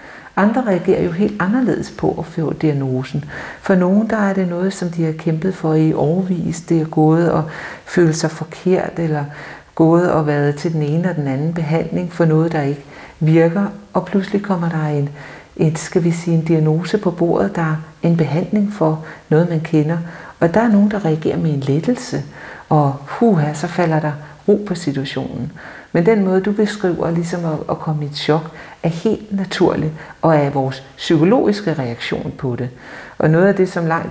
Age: 60-79